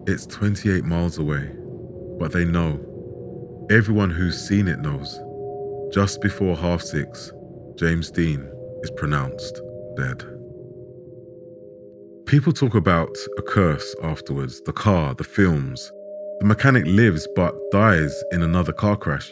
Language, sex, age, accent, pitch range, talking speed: English, male, 30-49, British, 85-110 Hz, 120 wpm